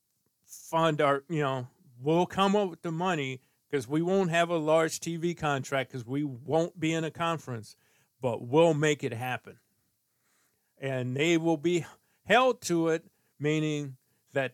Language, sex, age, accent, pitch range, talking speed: English, male, 40-59, American, 135-165 Hz, 160 wpm